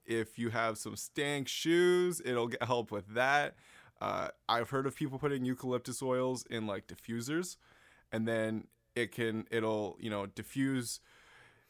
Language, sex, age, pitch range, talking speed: English, male, 20-39, 105-125 Hz, 155 wpm